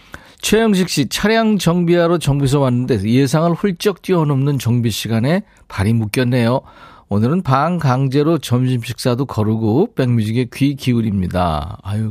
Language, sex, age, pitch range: Korean, male, 40-59, 110-165 Hz